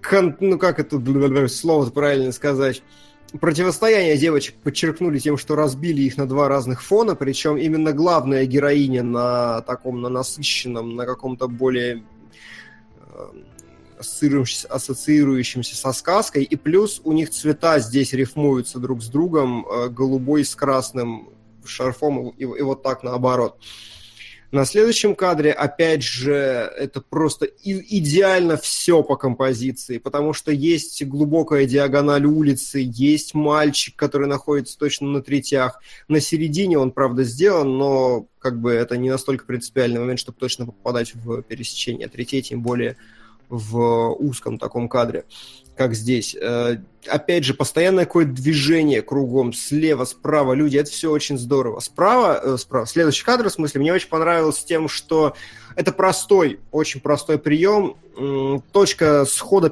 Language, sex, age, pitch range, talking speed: Russian, male, 20-39, 125-155 Hz, 135 wpm